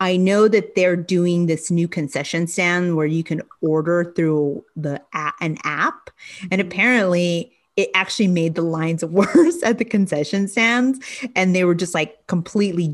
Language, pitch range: English, 160-215 Hz